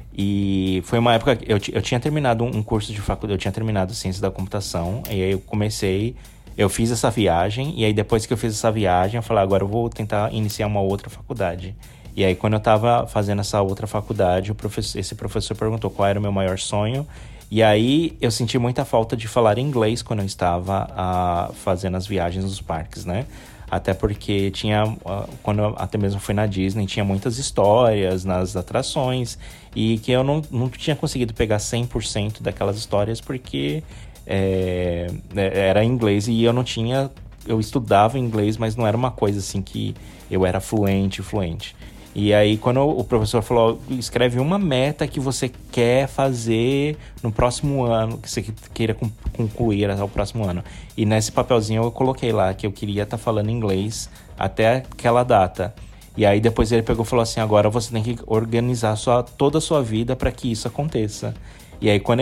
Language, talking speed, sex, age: Portuguese, 185 wpm, male, 20-39